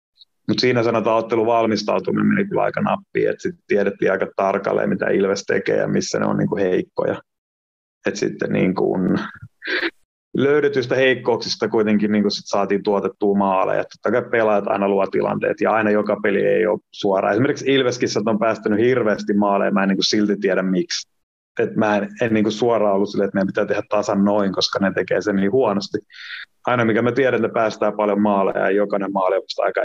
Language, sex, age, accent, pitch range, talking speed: Finnish, male, 30-49, native, 100-120 Hz, 175 wpm